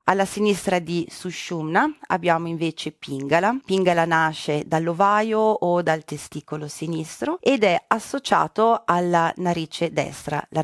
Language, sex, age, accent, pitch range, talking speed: Italian, female, 30-49, native, 155-185 Hz, 120 wpm